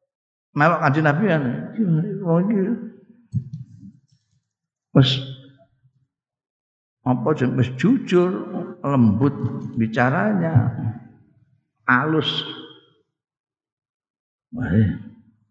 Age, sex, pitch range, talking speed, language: 50-69, male, 110-150 Hz, 40 wpm, Indonesian